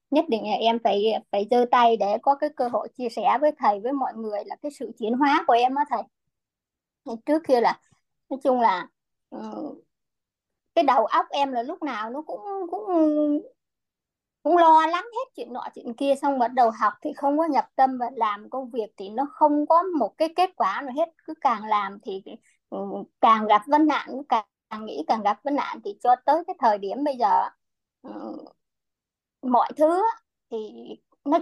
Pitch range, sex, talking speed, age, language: 235-305 Hz, male, 195 wpm, 20-39, Vietnamese